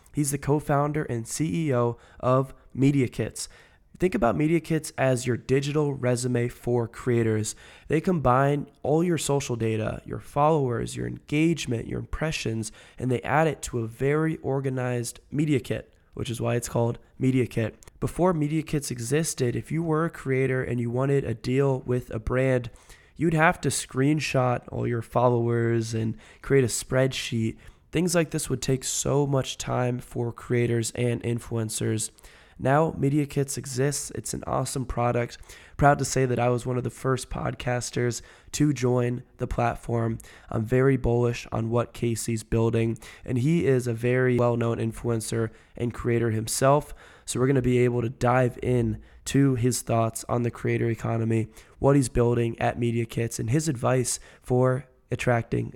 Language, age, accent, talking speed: English, 20-39, American, 165 wpm